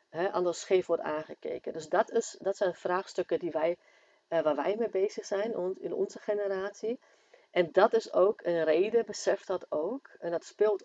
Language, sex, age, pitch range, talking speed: Dutch, female, 40-59, 165-215 Hz, 185 wpm